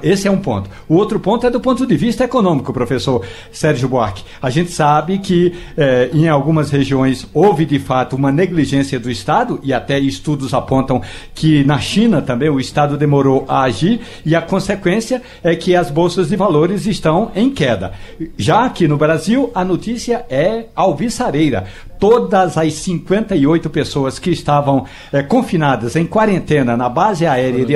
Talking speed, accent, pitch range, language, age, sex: 170 wpm, Brazilian, 135-180 Hz, Portuguese, 60-79, male